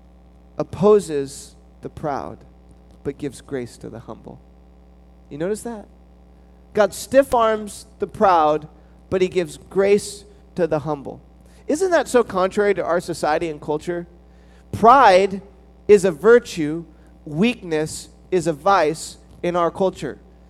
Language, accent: English, American